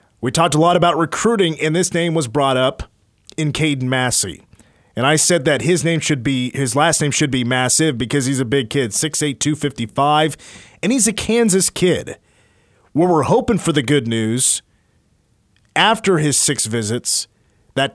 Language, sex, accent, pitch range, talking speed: English, male, American, 125-160 Hz, 175 wpm